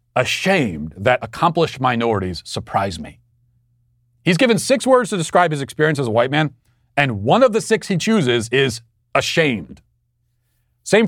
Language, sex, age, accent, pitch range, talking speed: English, male, 40-59, American, 120-160 Hz, 150 wpm